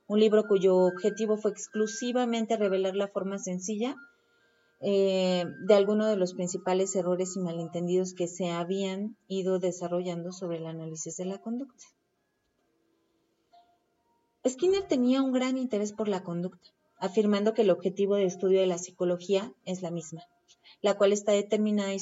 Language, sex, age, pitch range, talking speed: Spanish, female, 30-49, 180-215 Hz, 150 wpm